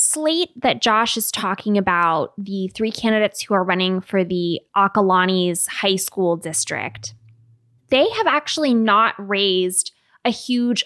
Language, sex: English, female